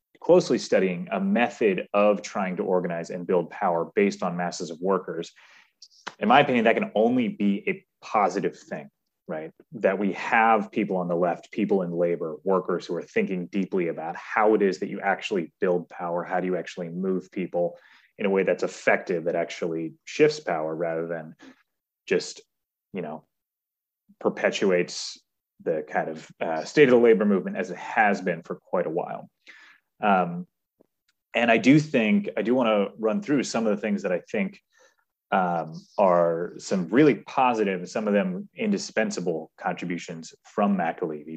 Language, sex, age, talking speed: English, male, 30-49, 175 wpm